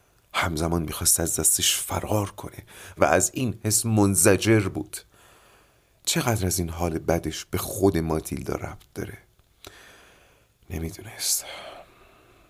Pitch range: 80-105 Hz